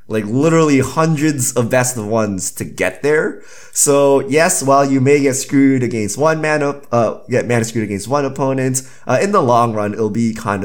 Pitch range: 115-145 Hz